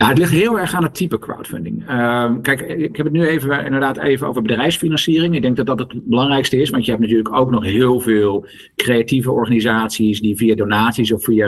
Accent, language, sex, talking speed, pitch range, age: Dutch, Dutch, male, 210 wpm, 110-135 Hz, 50-69